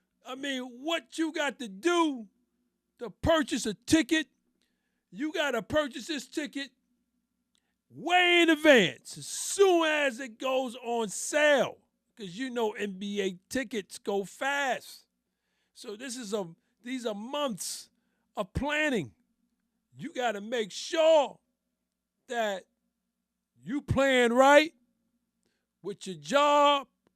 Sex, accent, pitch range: male, American, 225-290 Hz